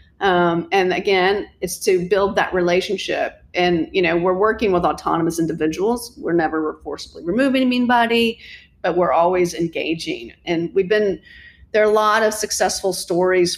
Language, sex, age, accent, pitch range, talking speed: English, female, 40-59, American, 170-210 Hz, 155 wpm